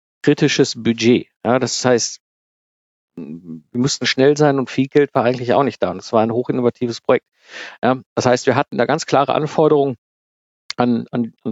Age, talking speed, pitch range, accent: 50-69, 175 wpm, 115-145 Hz, German